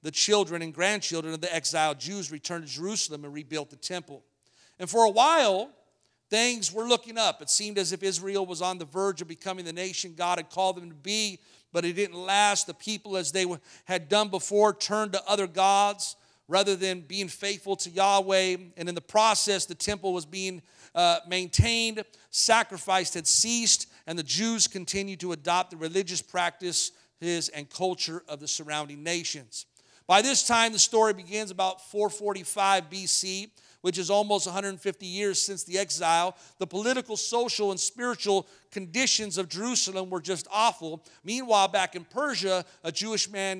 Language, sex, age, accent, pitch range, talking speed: English, male, 50-69, American, 175-210 Hz, 175 wpm